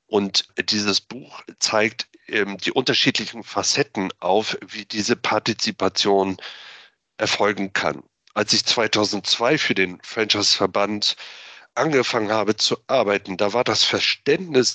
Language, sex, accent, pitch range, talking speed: German, male, German, 105-125 Hz, 115 wpm